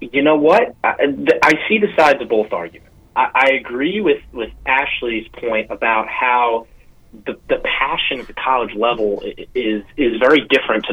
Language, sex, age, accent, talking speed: English, male, 30-49, American, 175 wpm